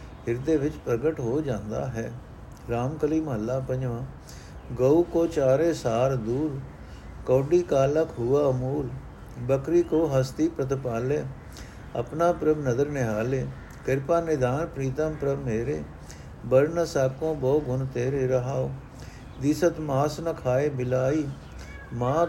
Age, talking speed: 60-79, 115 wpm